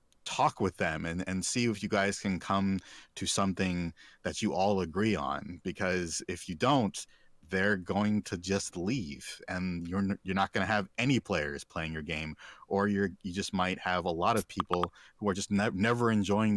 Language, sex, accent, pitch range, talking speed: English, male, American, 90-100 Hz, 200 wpm